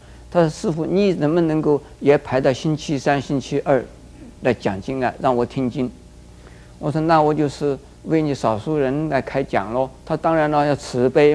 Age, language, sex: 50-69, Chinese, male